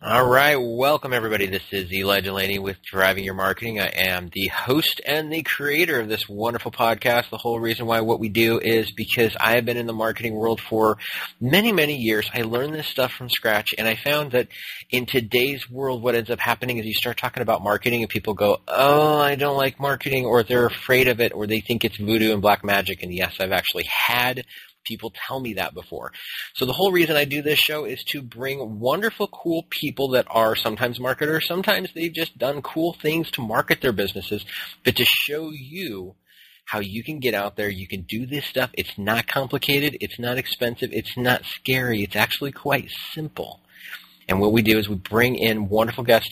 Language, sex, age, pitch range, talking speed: English, male, 30-49, 105-135 Hz, 210 wpm